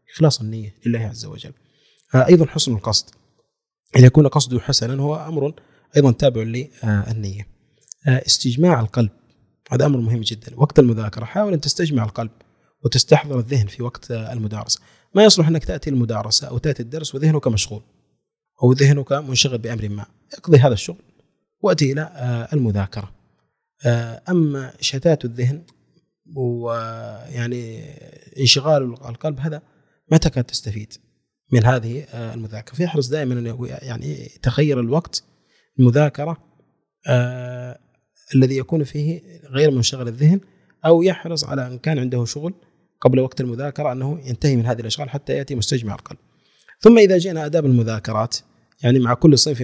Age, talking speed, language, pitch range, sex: 30-49, 135 wpm, Arabic, 115-150 Hz, male